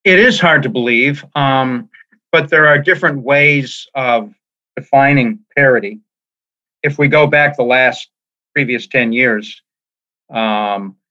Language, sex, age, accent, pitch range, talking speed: English, male, 40-59, American, 115-140 Hz, 130 wpm